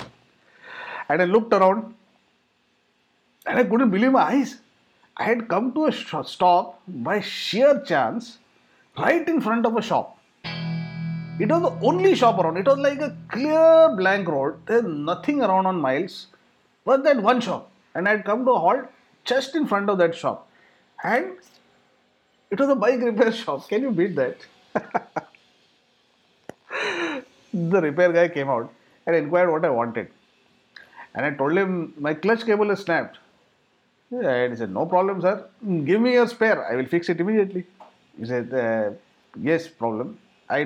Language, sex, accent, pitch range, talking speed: English, male, Indian, 145-235 Hz, 165 wpm